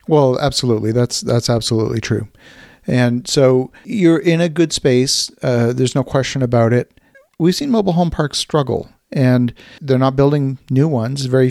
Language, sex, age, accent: English, male, 50-69, American